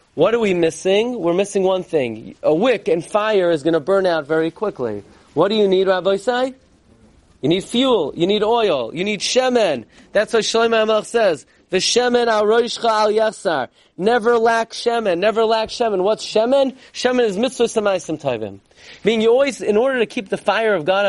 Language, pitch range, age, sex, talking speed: English, 175-230 Hz, 30-49, male, 180 wpm